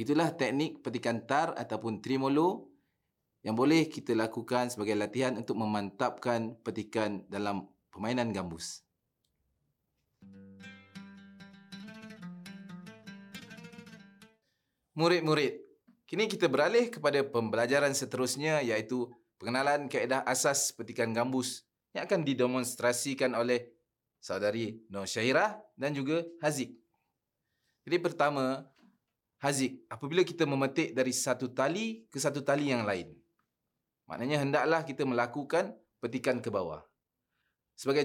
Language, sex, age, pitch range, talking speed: Malay, male, 30-49, 120-175 Hz, 100 wpm